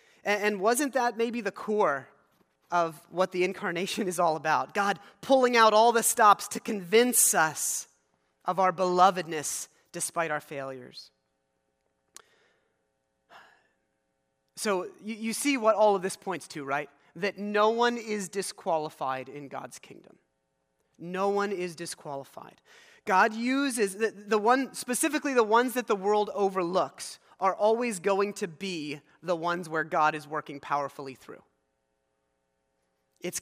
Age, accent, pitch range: 30-49, American, 140-205 Hz